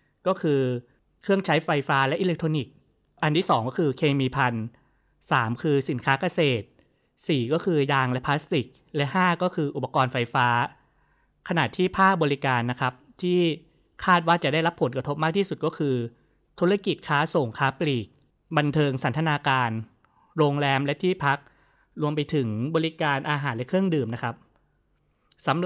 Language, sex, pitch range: Thai, male, 130-170 Hz